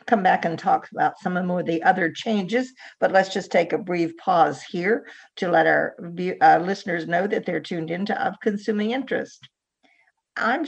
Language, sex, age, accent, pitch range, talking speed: English, female, 50-69, American, 165-235 Hz, 180 wpm